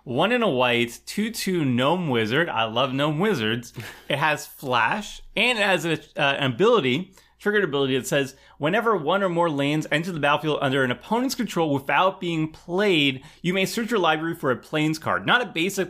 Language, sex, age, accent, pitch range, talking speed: English, male, 30-49, American, 125-180 Hz, 200 wpm